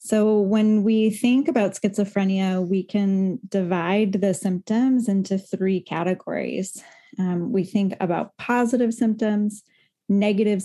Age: 20-39